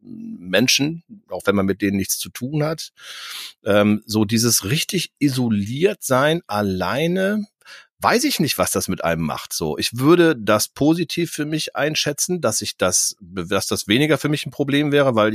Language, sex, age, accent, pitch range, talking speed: German, male, 40-59, German, 105-145 Hz, 175 wpm